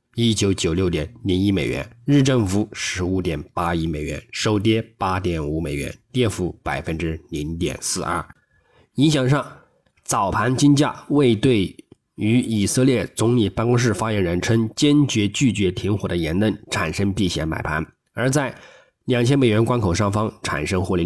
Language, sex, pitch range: Chinese, male, 90-120 Hz